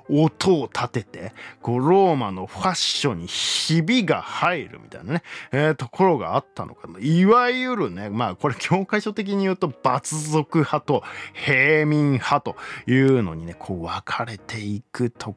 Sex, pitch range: male, 125-200 Hz